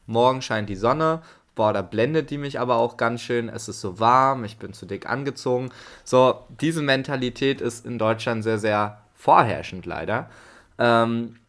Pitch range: 110-135 Hz